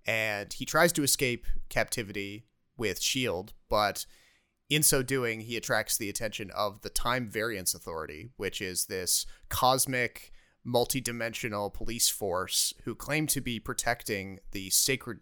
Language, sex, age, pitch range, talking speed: English, male, 30-49, 105-130 Hz, 140 wpm